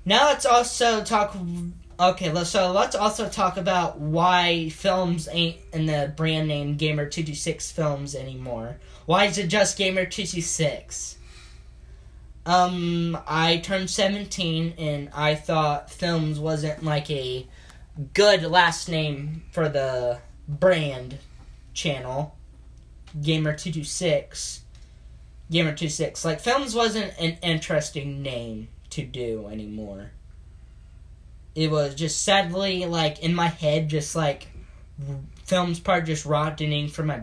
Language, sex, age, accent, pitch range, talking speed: English, male, 10-29, American, 125-170 Hz, 115 wpm